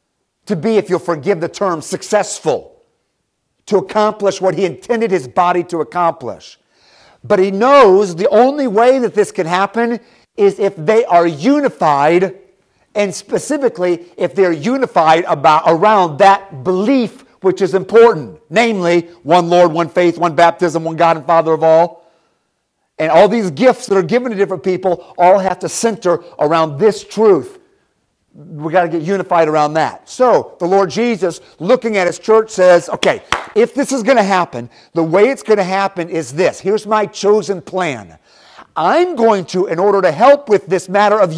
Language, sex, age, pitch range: English, male, 50-69, 175-225 Hz